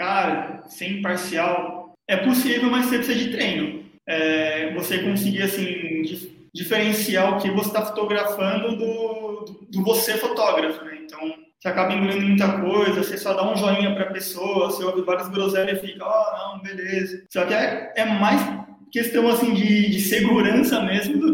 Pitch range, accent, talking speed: 185-210 Hz, Brazilian, 170 wpm